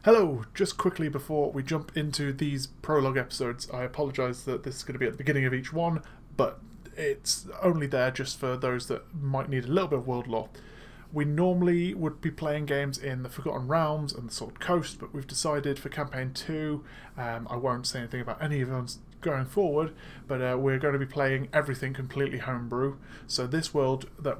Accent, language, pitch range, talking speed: British, English, 130-150 Hz, 205 wpm